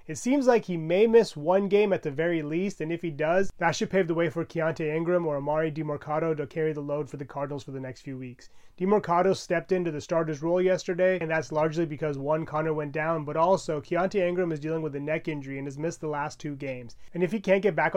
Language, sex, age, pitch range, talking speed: English, male, 30-49, 150-180 Hz, 255 wpm